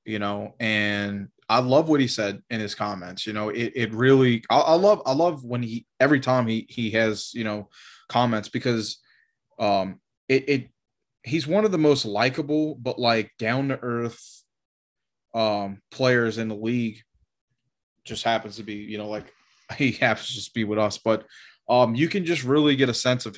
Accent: American